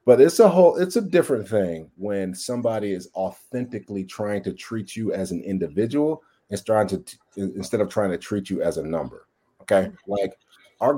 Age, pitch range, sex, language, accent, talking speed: 30-49, 95-125 Hz, male, English, American, 185 wpm